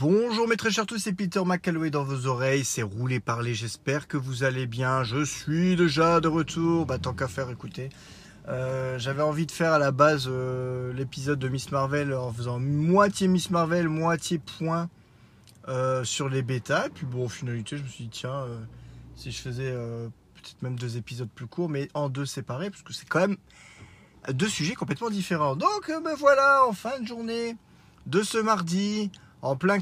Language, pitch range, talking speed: French, 125-170 Hz, 200 wpm